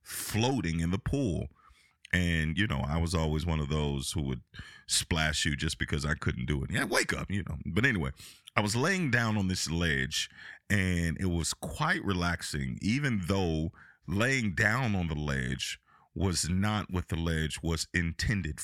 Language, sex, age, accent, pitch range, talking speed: English, male, 40-59, American, 80-105 Hz, 180 wpm